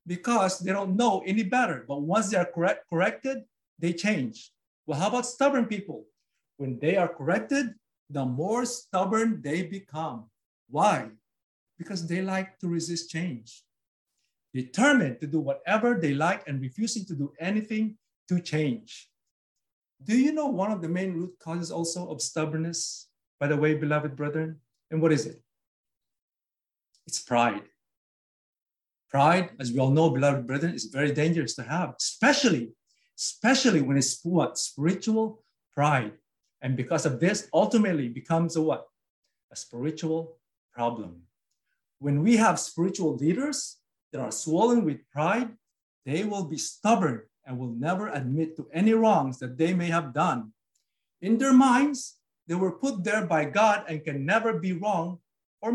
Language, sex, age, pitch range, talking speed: English, male, 50-69, 145-215 Hz, 150 wpm